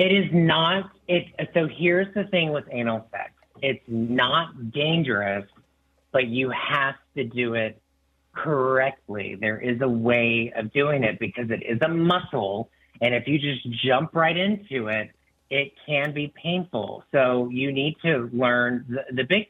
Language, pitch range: English, 120-170 Hz